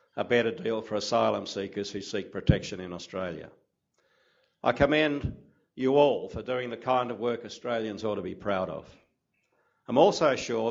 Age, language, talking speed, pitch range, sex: 60-79, English, 170 wpm, 105-125 Hz, male